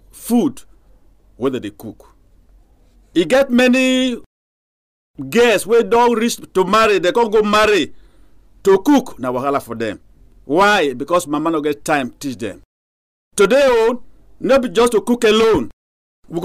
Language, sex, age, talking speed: English, male, 50-69, 140 wpm